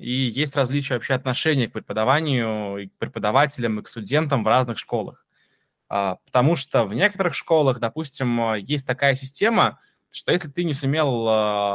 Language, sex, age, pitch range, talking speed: Russian, male, 20-39, 115-145 Hz, 155 wpm